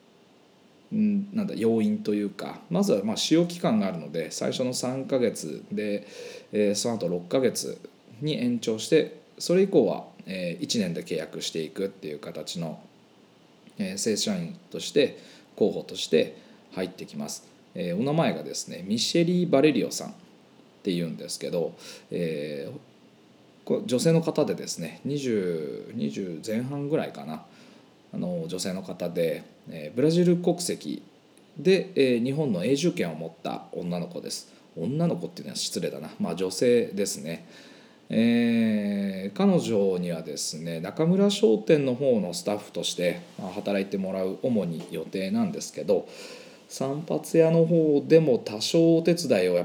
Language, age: Japanese, 20-39